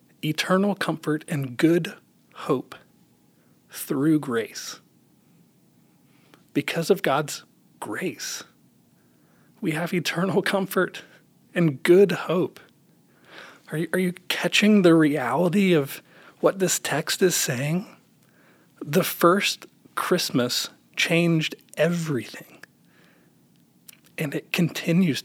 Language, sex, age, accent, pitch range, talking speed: English, male, 40-59, American, 145-180 Hz, 90 wpm